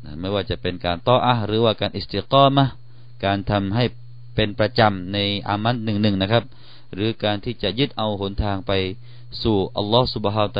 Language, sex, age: Thai, male, 30-49